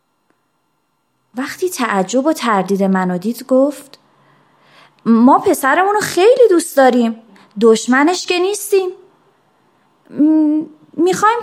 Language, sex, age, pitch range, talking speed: Persian, female, 30-49, 220-310 Hz, 80 wpm